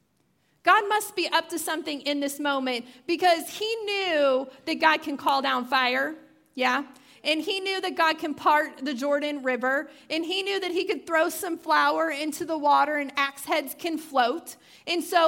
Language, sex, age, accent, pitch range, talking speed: English, female, 30-49, American, 265-330 Hz, 190 wpm